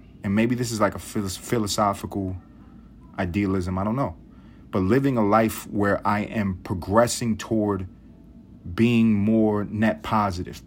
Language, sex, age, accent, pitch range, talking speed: English, male, 30-49, American, 105-125 Hz, 135 wpm